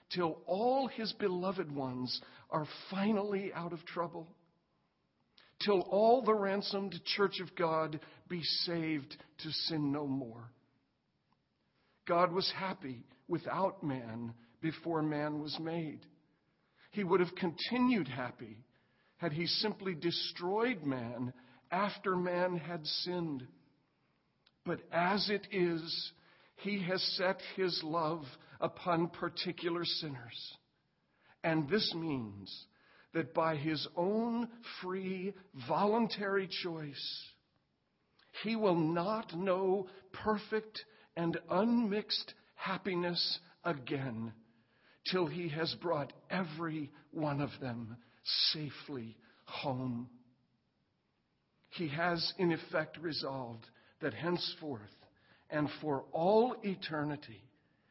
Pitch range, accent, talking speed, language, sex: 145-190 Hz, American, 100 wpm, English, male